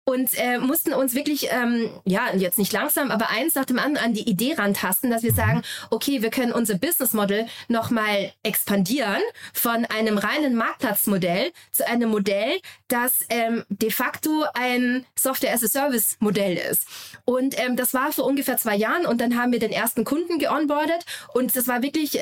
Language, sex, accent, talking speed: German, female, German, 175 wpm